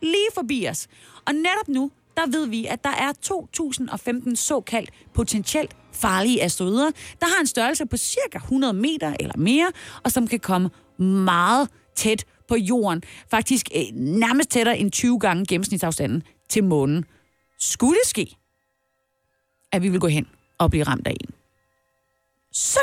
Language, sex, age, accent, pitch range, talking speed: Danish, female, 30-49, native, 210-310 Hz, 155 wpm